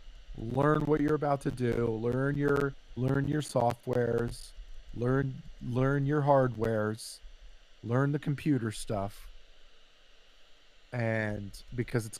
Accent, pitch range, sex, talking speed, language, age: American, 110-135 Hz, male, 110 wpm, English, 40-59